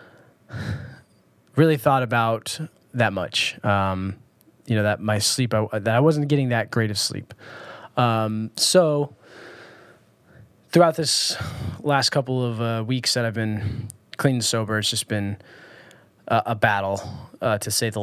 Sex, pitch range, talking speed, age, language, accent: male, 110-140 Hz, 150 wpm, 20-39, English, American